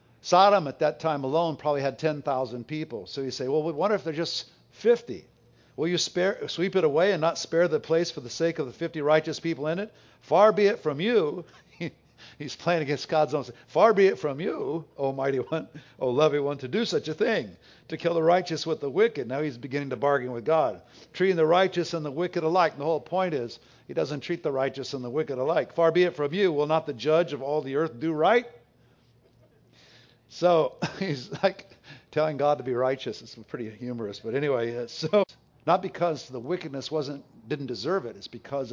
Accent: American